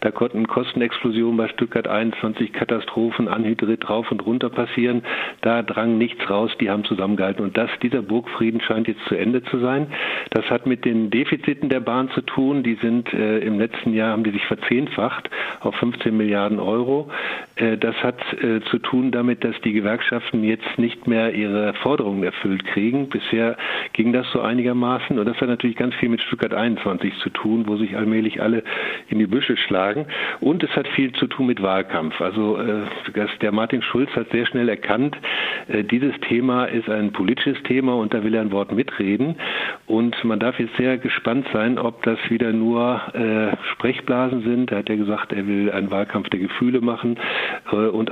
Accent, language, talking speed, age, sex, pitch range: German, German, 185 wpm, 50-69, male, 110-120 Hz